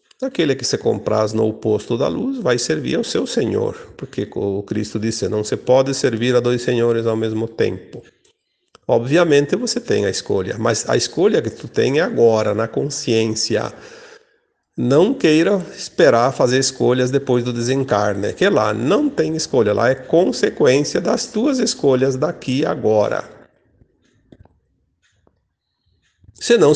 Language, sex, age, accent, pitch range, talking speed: Portuguese, male, 50-69, Brazilian, 110-170 Hz, 145 wpm